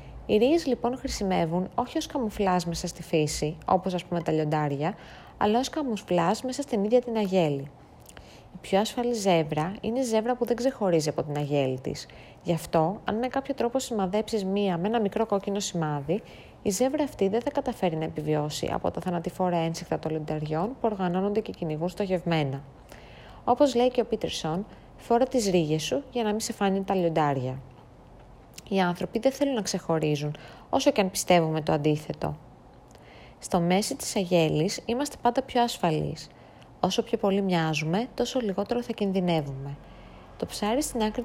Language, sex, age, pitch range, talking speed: Greek, female, 30-49, 160-230 Hz, 170 wpm